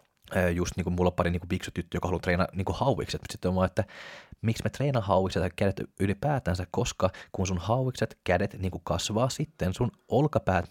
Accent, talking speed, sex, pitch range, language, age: native, 190 wpm, male, 90-110 Hz, Finnish, 20-39